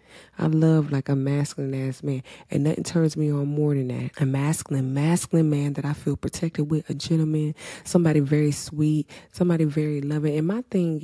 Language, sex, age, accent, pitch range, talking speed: English, female, 20-39, American, 135-170 Hz, 185 wpm